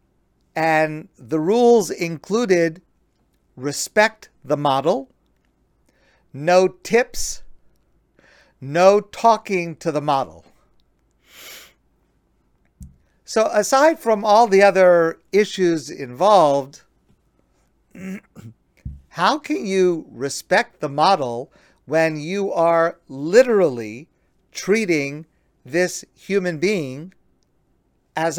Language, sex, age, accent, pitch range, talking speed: English, male, 50-69, American, 145-190 Hz, 80 wpm